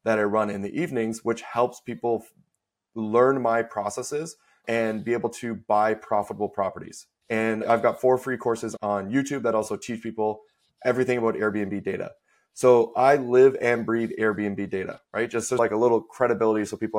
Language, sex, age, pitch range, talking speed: English, male, 20-39, 110-125 Hz, 175 wpm